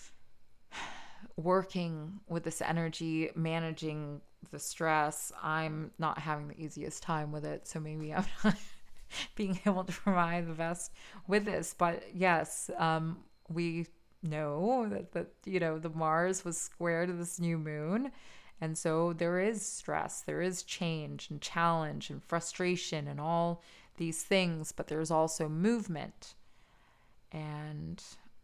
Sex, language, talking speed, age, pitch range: female, English, 135 wpm, 30-49, 155-175 Hz